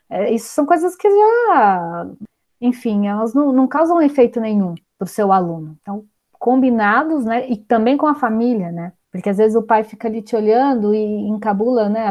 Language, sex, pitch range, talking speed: Portuguese, female, 205-255 Hz, 185 wpm